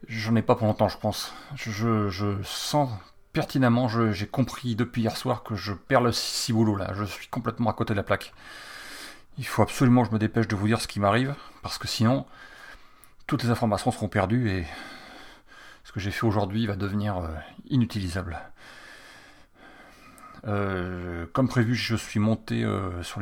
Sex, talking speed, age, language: male, 180 wpm, 30-49, French